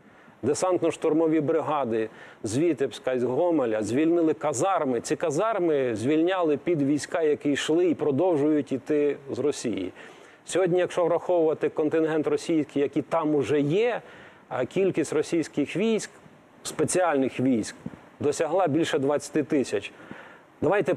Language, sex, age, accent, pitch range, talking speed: Ukrainian, male, 40-59, native, 145-180 Hz, 110 wpm